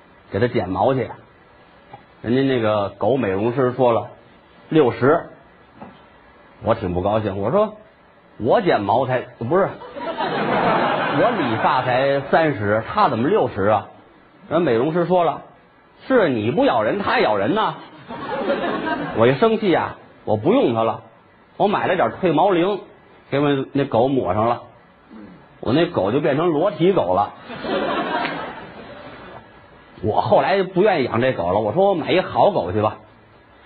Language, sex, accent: Chinese, male, native